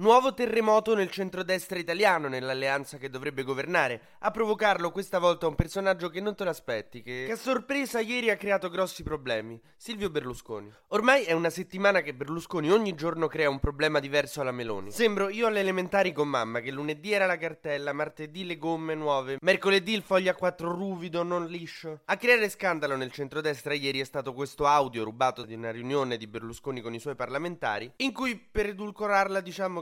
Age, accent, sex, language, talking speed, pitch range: 20-39, native, male, Italian, 185 wpm, 140-190 Hz